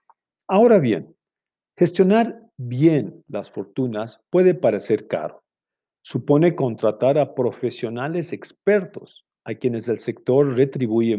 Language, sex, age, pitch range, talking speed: Spanish, male, 50-69, 115-155 Hz, 100 wpm